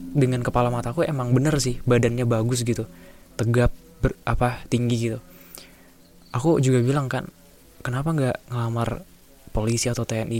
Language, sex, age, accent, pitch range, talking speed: Indonesian, male, 10-29, native, 90-120 Hz, 145 wpm